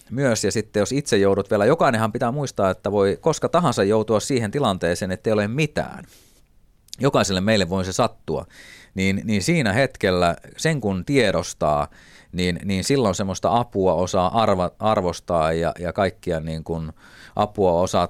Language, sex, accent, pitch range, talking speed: Finnish, male, native, 85-105 Hz, 155 wpm